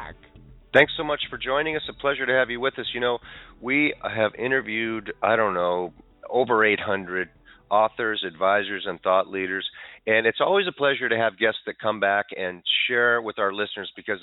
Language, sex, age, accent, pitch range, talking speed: English, male, 40-59, American, 95-115 Hz, 190 wpm